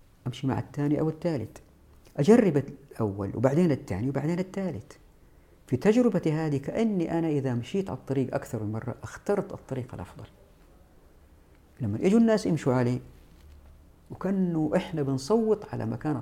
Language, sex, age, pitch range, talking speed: Arabic, female, 50-69, 100-160 Hz, 135 wpm